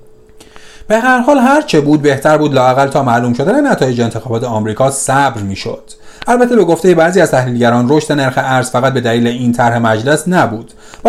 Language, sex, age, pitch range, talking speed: Persian, male, 40-59, 120-175 Hz, 190 wpm